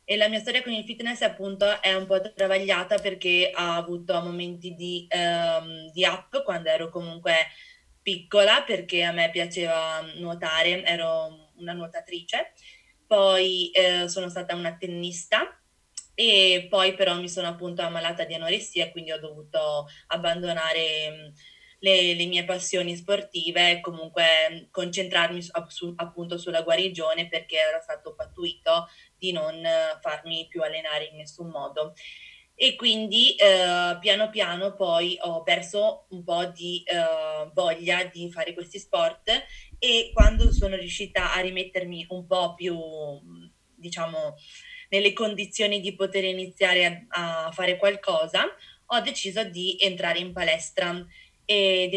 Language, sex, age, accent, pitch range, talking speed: Italian, female, 20-39, native, 170-200 Hz, 135 wpm